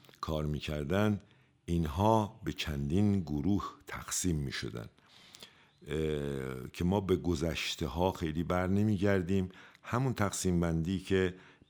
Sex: male